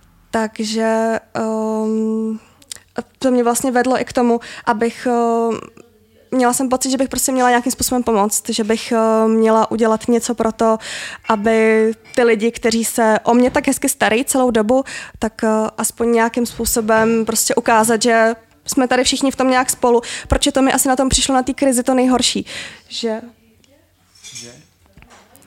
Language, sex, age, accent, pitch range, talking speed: Czech, female, 20-39, native, 225-255 Hz, 165 wpm